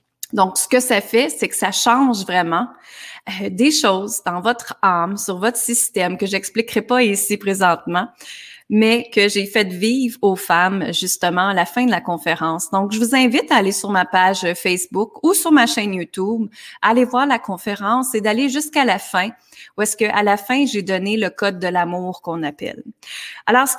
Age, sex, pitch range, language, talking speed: 30-49, female, 190-245 Hz, French, 200 wpm